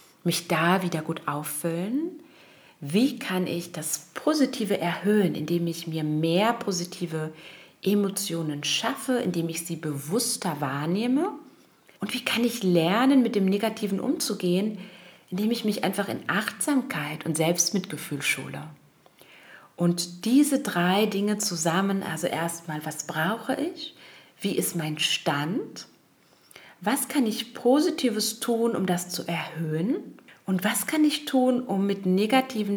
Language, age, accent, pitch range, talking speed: German, 40-59, German, 165-225 Hz, 130 wpm